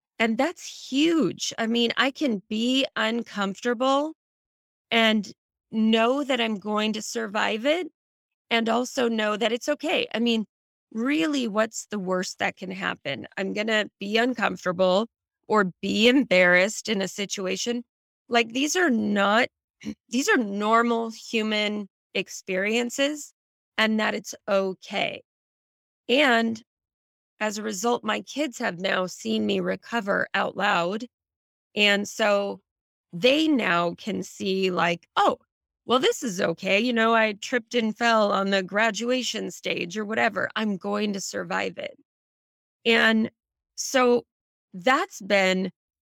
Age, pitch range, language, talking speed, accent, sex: 20-39, 200-245 Hz, English, 135 wpm, American, female